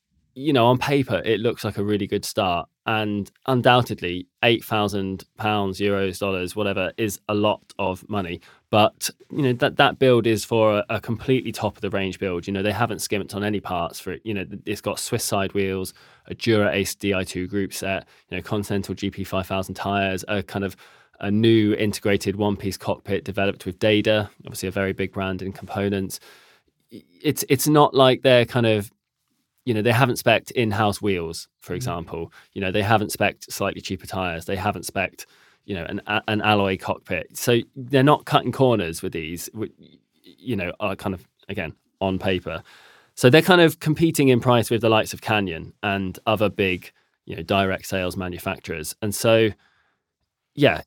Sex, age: male, 20-39